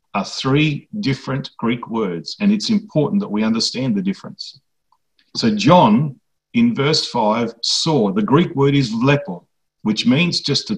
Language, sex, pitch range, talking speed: English, male, 125-190 Hz, 155 wpm